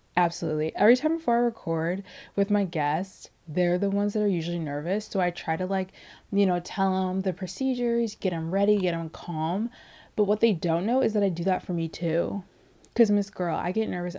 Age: 20-39